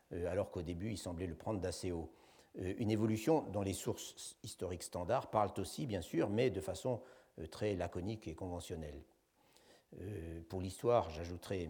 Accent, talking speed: French, 170 wpm